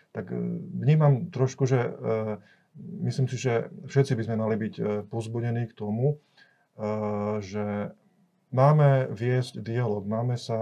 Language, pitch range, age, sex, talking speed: Slovak, 105-130 Hz, 40-59, male, 120 wpm